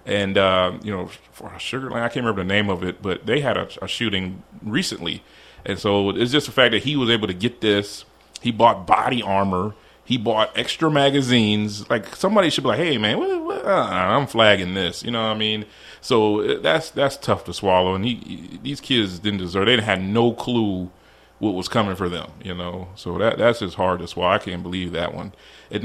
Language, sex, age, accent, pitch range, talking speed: English, male, 30-49, American, 95-125 Hz, 225 wpm